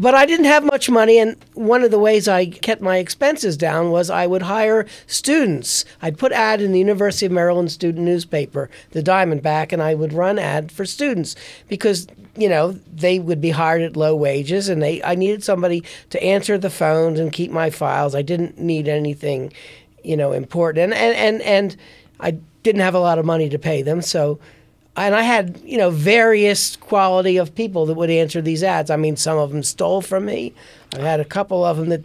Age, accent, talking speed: 40-59, American, 215 wpm